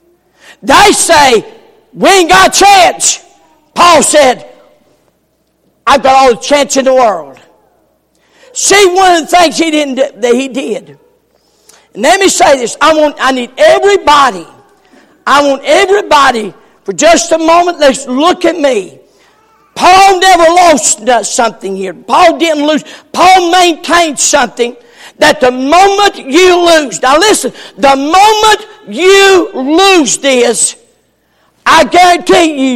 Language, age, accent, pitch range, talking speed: English, 50-69, American, 275-375 Hz, 135 wpm